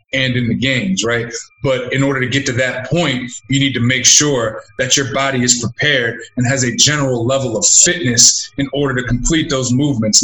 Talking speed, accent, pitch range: 210 wpm, American, 120-135 Hz